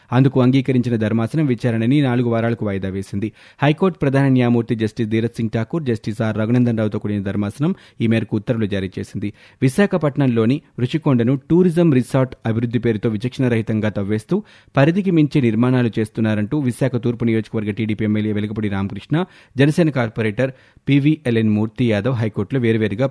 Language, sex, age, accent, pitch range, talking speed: Telugu, male, 30-49, native, 110-135 Hz, 130 wpm